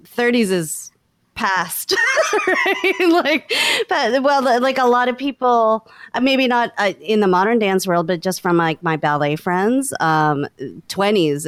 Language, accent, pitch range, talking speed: English, American, 160-210 Hz, 135 wpm